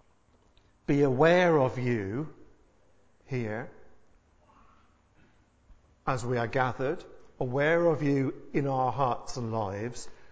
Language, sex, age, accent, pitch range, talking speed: English, male, 50-69, British, 115-160 Hz, 100 wpm